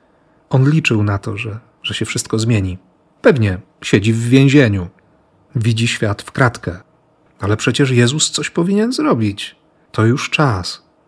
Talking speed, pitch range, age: 140 wpm, 105-135 Hz, 40-59